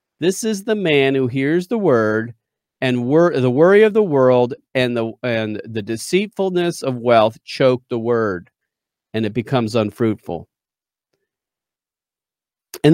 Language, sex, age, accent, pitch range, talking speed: English, male, 40-59, American, 115-165 Hz, 140 wpm